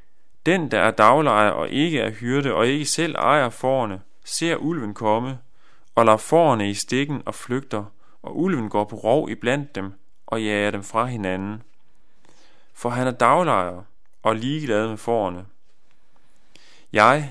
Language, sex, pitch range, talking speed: Danish, male, 105-135 Hz, 160 wpm